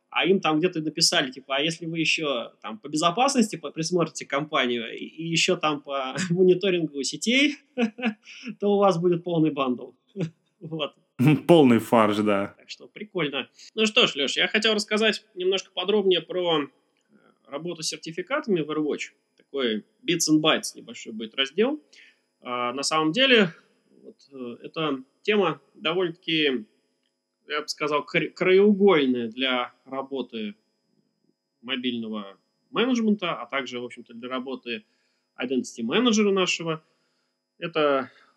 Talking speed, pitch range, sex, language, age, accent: 120 wpm, 135-195 Hz, male, Russian, 20-39, native